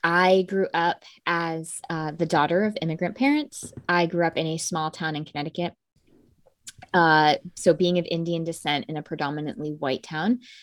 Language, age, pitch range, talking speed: English, 20-39, 165-200 Hz, 170 wpm